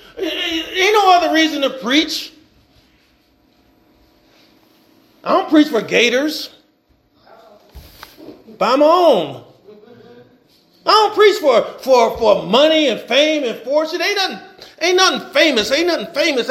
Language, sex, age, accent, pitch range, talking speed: English, male, 40-59, American, 235-325 Hz, 120 wpm